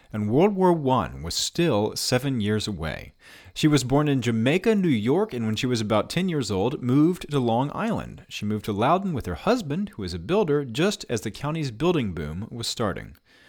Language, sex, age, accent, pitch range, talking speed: English, male, 30-49, American, 100-155 Hz, 210 wpm